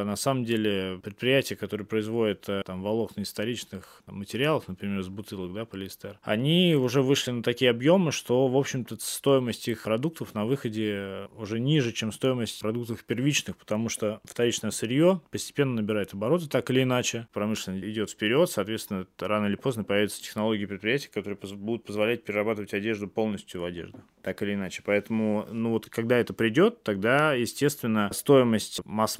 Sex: male